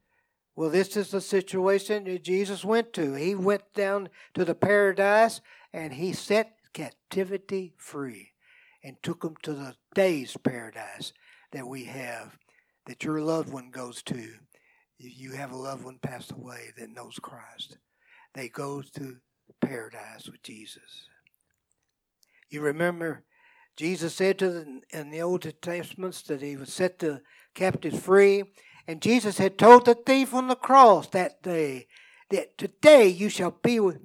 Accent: American